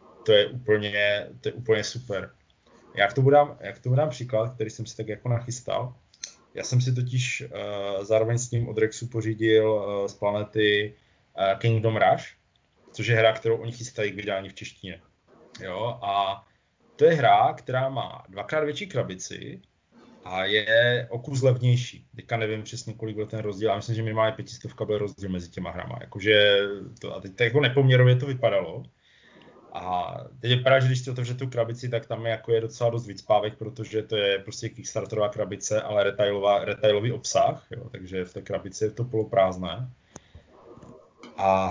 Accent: native